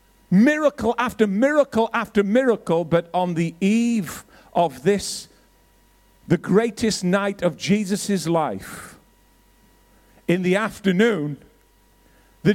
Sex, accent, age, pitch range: male, British, 50-69, 185-240 Hz